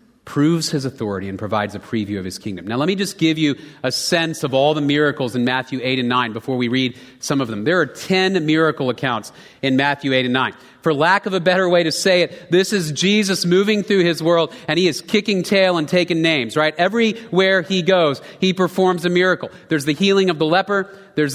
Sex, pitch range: male, 155-190 Hz